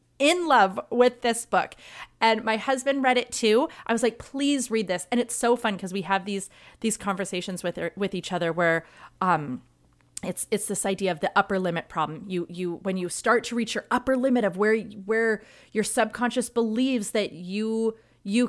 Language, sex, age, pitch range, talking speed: English, female, 30-49, 190-265 Hz, 200 wpm